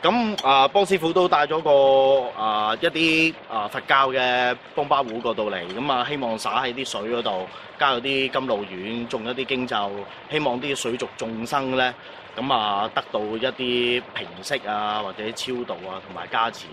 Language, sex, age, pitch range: Chinese, male, 20-39, 120-170 Hz